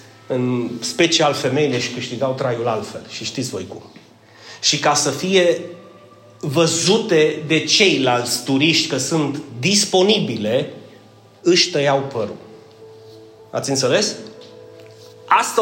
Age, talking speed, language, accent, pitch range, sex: 30-49, 110 wpm, Romanian, native, 145-230 Hz, male